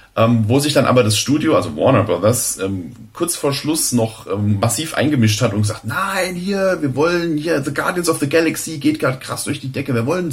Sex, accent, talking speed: male, German, 225 wpm